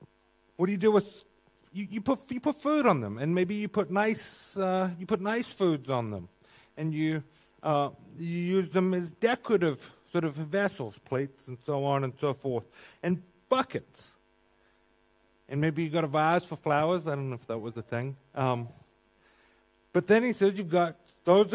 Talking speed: 195 wpm